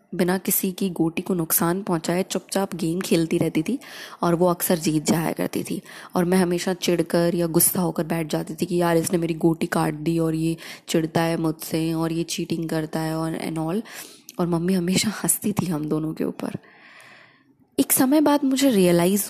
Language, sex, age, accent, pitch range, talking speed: Hindi, female, 20-39, native, 170-215 Hz, 195 wpm